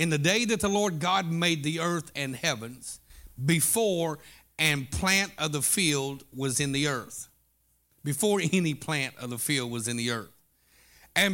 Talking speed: 175 wpm